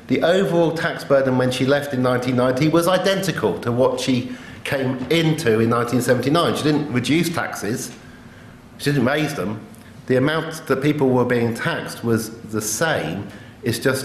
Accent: British